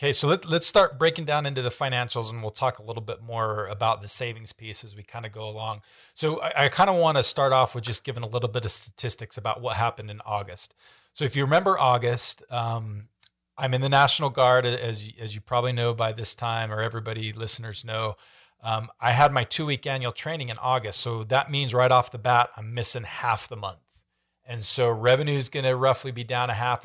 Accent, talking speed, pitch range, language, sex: American, 230 wpm, 110-135 Hz, English, male